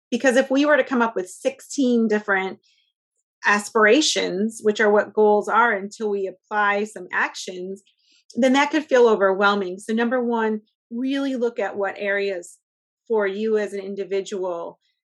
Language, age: English, 30-49